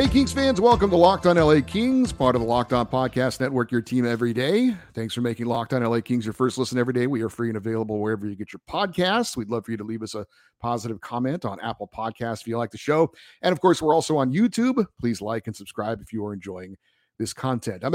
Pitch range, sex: 115-160 Hz, male